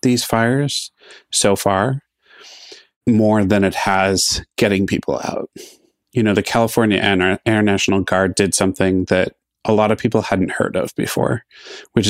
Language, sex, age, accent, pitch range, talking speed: English, male, 30-49, American, 95-110 Hz, 150 wpm